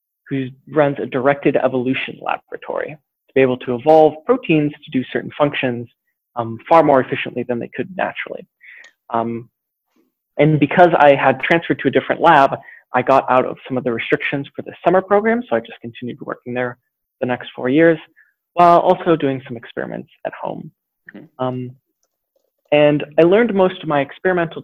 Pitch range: 125-160 Hz